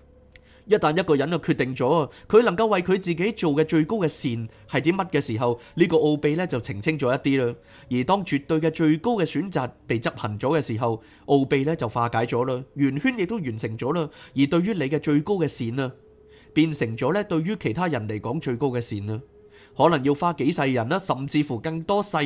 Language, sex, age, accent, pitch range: Chinese, male, 30-49, native, 115-160 Hz